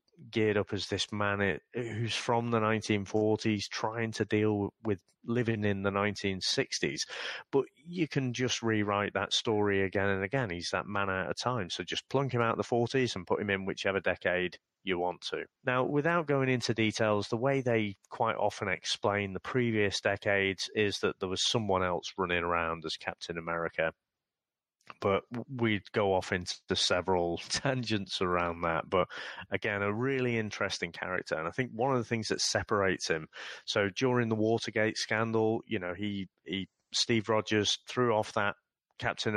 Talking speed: 175 wpm